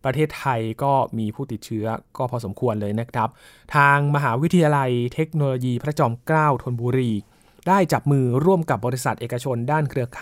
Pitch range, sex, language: 125-160 Hz, male, Thai